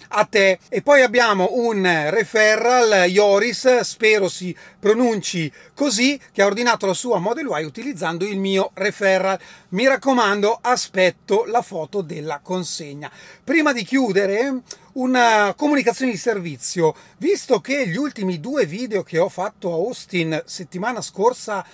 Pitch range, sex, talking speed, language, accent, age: 175-245 Hz, male, 140 wpm, Italian, native, 30-49